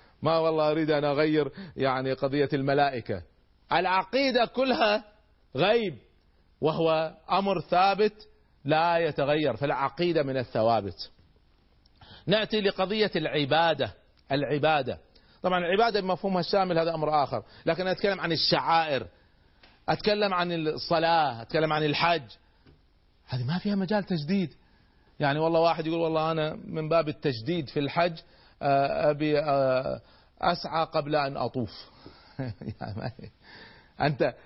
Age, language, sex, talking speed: 40-59, Arabic, male, 110 wpm